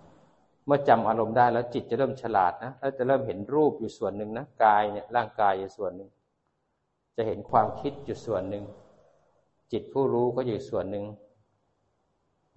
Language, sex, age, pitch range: Thai, male, 60-79, 105-130 Hz